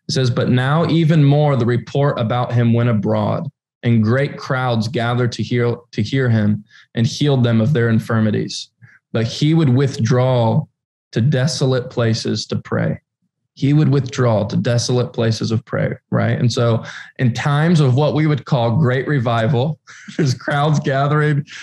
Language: English